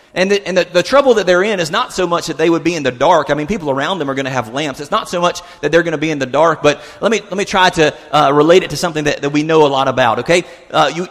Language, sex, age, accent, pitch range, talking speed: English, male, 30-49, American, 130-165 Hz, 345 wpm